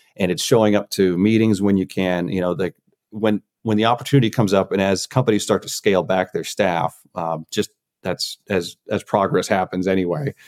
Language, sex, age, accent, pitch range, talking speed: English, male, 30-49, American, 95-110 Hz, 200 wpm